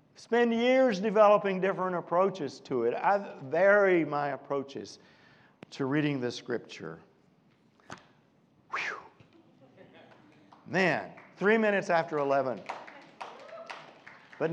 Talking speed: 90 wpm